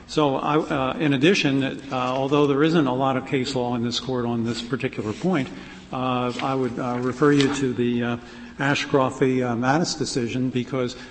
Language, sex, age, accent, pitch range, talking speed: English, male, 50-69, American, 125-150 Hz, 185 wpm